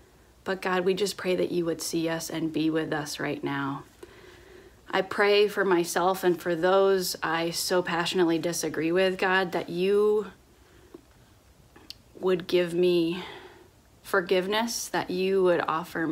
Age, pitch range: 30-49, 155-180 Hz